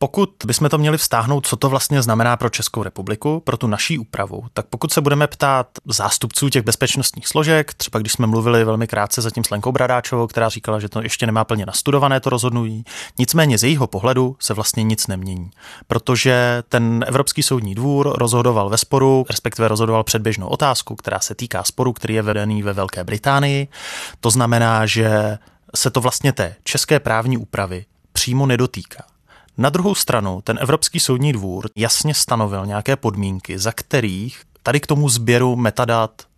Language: Czech